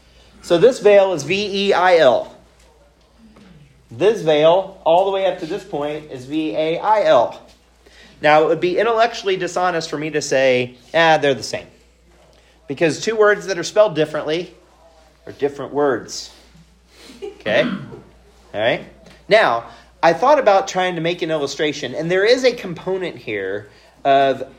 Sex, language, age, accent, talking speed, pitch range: male, English, 30-49, American, 160 wpm, 140-195 Hz